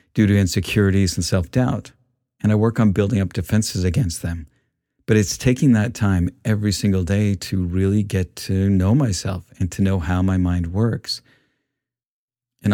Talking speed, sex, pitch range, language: 170 wpm, male, 95-120 Hz, English